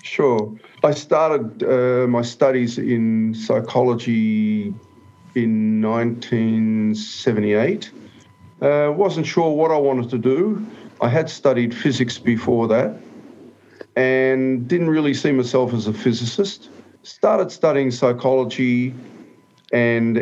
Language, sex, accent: English, male, Australian